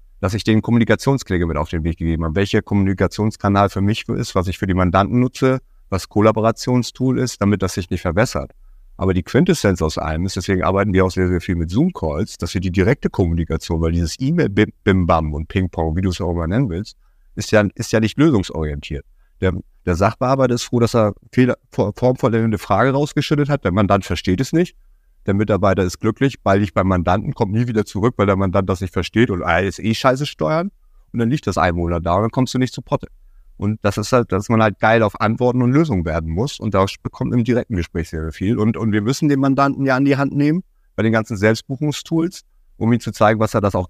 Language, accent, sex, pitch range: German, German, male, 90-120 Hz